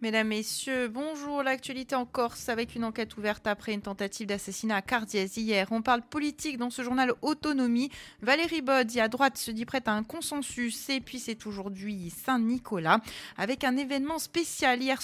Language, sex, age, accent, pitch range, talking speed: French, female, 30-49, French, 190-245 Hz, 180 wpm